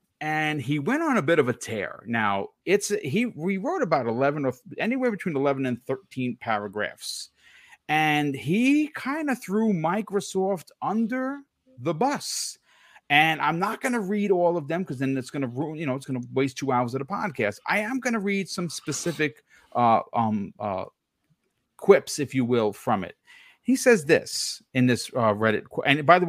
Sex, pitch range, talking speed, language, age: male, 130-205 Hz, 190 wpm, English, 40-59